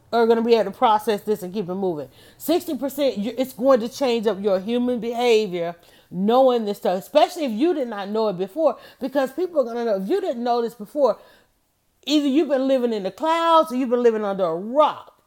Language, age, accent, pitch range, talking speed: English, 40-59, American, 210-270 Hz, 230 wpm